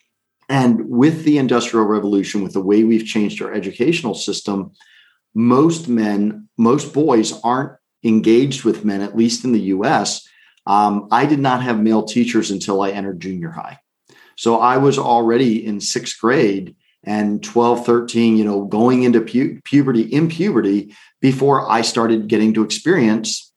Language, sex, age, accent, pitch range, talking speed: Danish, male, 40-59, American, 105-120 Hz, 155 wpm